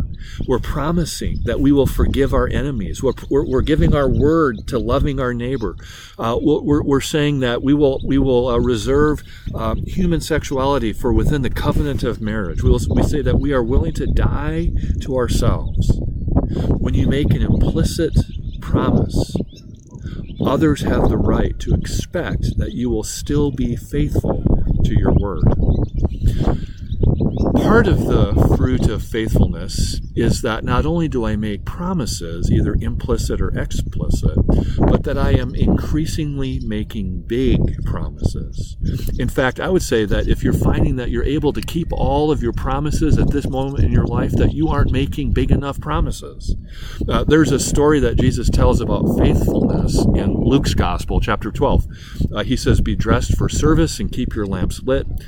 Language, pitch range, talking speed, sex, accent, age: English, 110-140 Hz, 165 wpm, male, American, 50-69